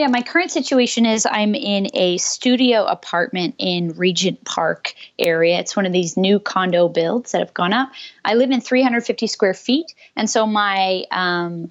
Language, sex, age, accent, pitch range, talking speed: English, female, 20-39, American, 175-215 Hz, 180 wpm